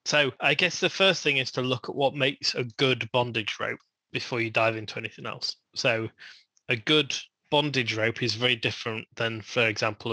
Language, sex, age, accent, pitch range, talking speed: English, male, 20-39, British, 115-135 Hz, 195 wpm